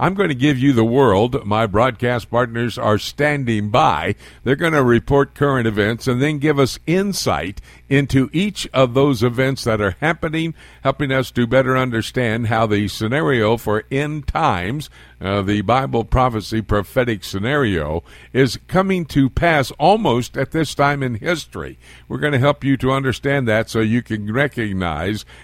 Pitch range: 110-145 Hz